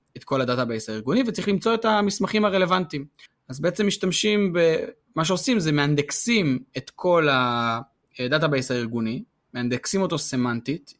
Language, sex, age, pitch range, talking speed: Hebrew, male, 20-39, 125-170 Hz, 125 wpm